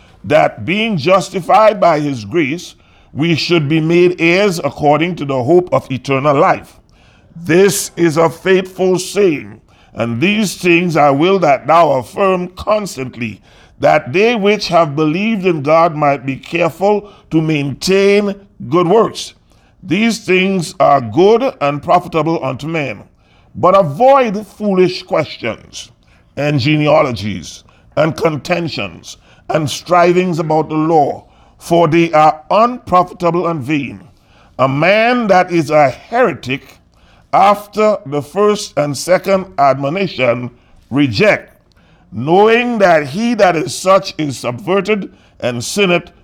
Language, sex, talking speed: English, male, 125 wpm